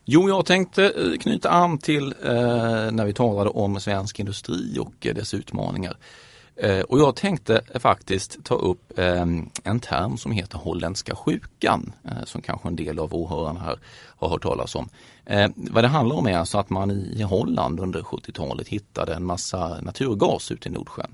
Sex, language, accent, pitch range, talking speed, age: male, Swedish, native, 90-120 Hz, 180 wpm, 30-49